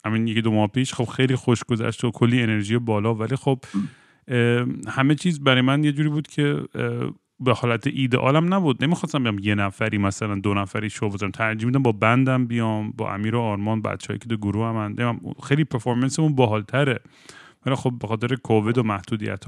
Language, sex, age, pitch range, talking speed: Persian, male, 30-49, 110-135 Hz, 180 wpm